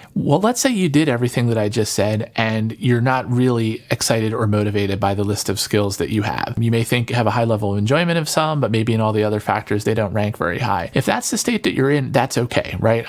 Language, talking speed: English, 270 wpm